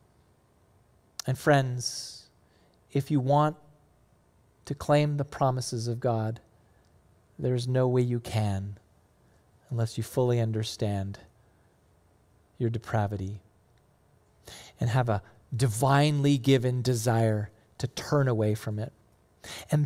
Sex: male